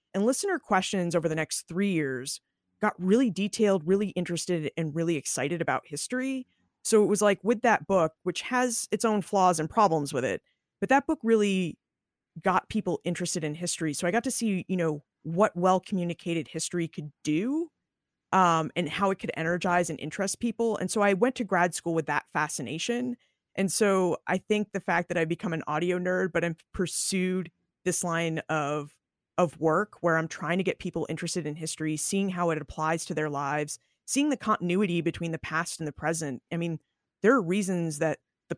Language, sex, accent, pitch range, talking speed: English, female, American, 160-195 Hz, 195 wpm